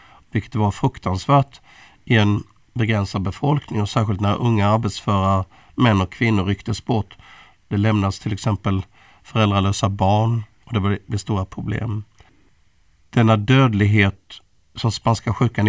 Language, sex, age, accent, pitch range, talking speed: Swedish, male, 50-69, native, 100-120 Hz, 125 wpm